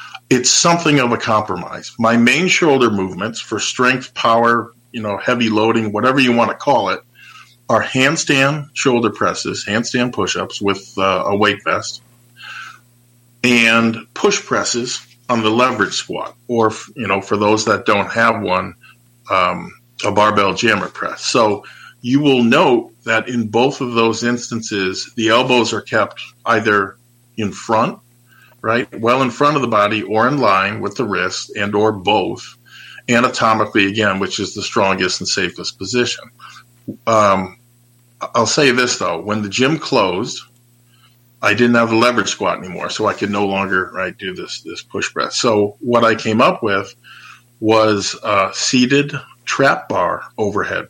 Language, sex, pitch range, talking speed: English, male, 105-125 Hz, 160 wpm